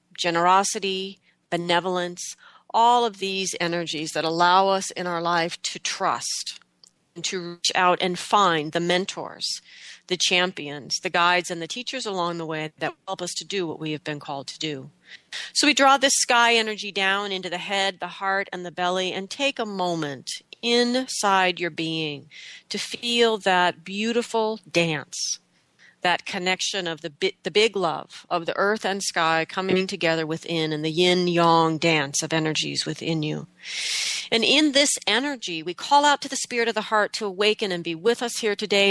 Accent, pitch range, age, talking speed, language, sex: American, 170-220 Hz, 40-59, 180 wpm, English, female